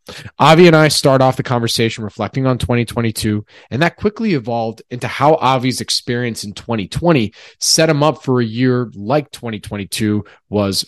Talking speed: 160 wpm